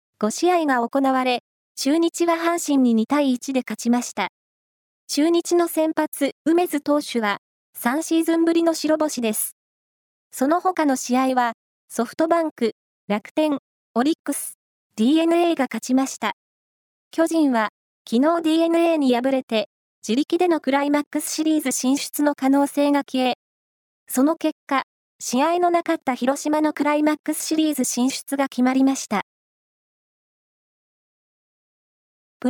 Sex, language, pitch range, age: female, Japanese, 255-315 Hz, 20-39